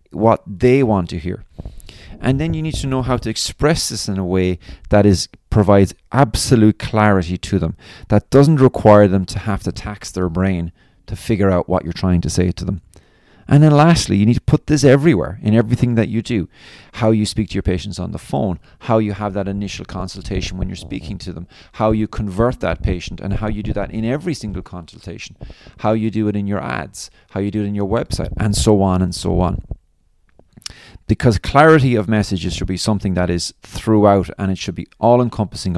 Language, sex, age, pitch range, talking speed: English, male, 30-49, 90-110 Hz, 215 wpm